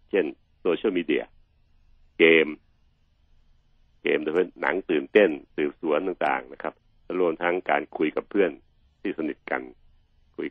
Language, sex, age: Thai, male, 60-79